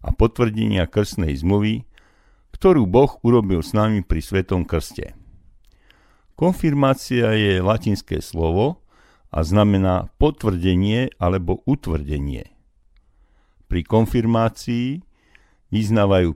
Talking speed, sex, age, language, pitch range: 90 wpm, male, 50-69, Slovak, 90-120 Hz